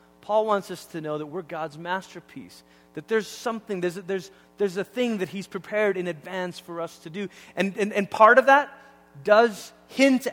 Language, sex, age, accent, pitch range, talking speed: English, male, 30-49, American, 140-205 Hz, 190 wpm